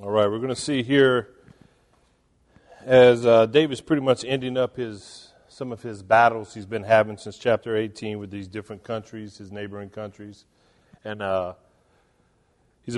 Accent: American